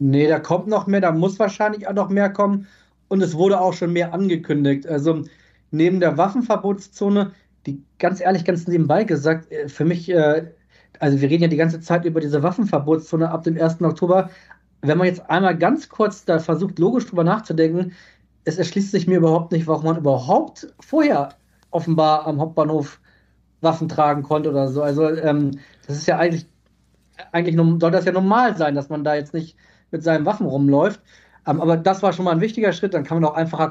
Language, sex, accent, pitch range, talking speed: German, male, German, 155-190 Hz, 190 wpm